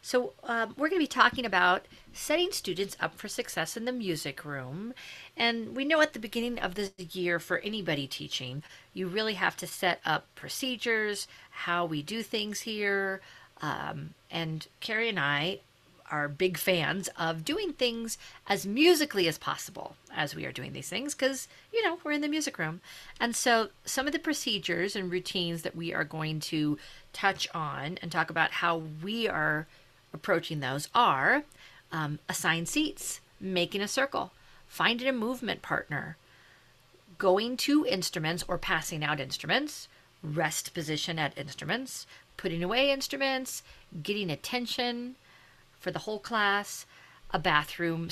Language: English